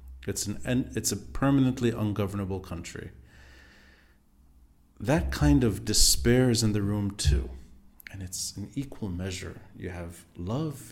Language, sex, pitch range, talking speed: English, male, 85-110 Hz, 130 wpm